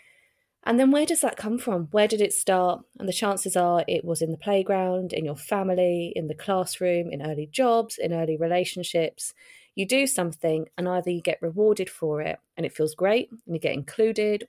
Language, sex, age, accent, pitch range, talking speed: English, female, 20-39, British, 160-200 Hz, 205 wpm